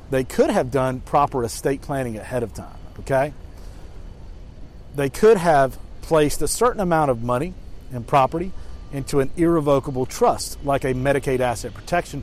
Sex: male